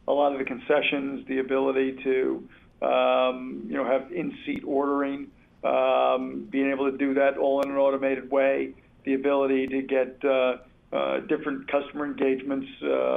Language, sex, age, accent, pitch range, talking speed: English, male, 50-69, American, 130-140 Hz, 155 wpm